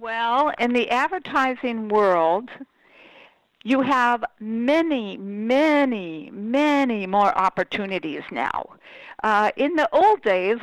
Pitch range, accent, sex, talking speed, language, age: 195-270 Hz, American, female, 100 wpm, English, 60-79